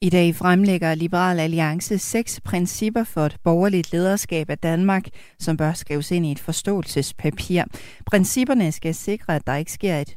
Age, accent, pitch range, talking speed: 40-59, native, 150-190 Hz, 165 wpm